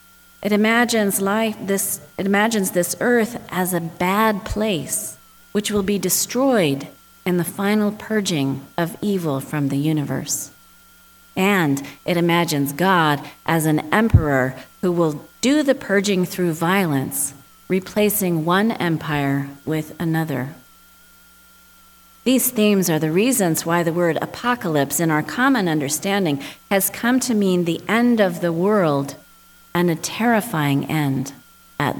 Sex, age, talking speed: female, 40-59, 135 wpm